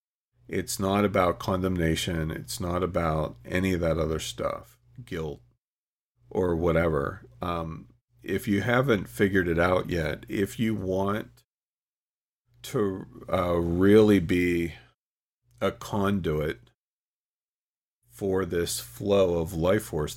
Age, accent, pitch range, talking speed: 40-59, American, 85-110 Hz, 115 wpm